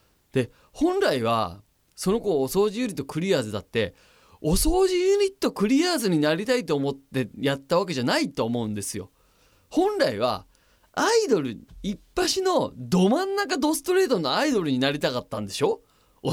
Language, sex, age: Japanese, male, 20-39